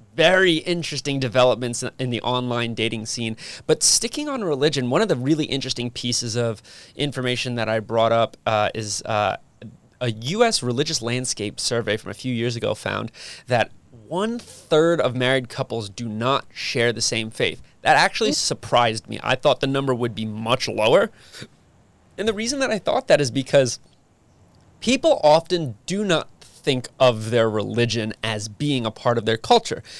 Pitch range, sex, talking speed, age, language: 115-150 Hz, male, 170 wpm, 20-39, English